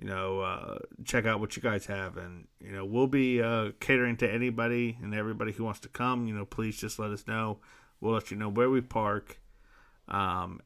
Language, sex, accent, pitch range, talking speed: English, male, American, 105-125 Hz, 220 wpm